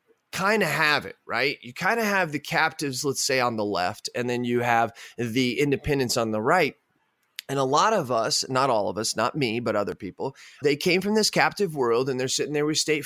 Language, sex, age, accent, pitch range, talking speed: English, male, 20-39, American, 120-175 Hz, 235 wpm